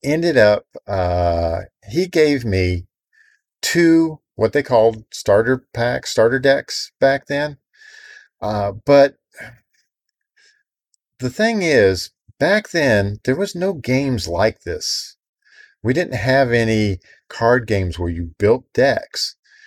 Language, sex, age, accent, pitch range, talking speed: English, male, 50-69, American, 95-145 Hz, 120 wpm